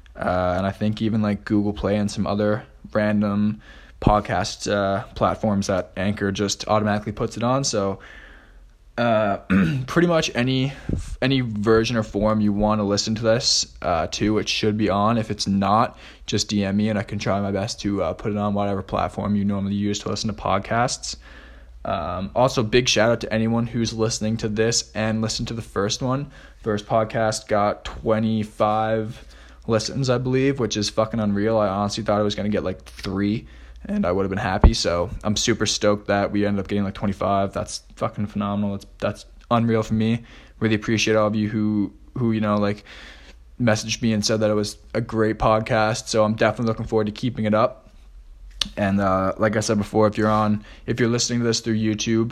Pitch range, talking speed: 100-110 Hz, 200 wpm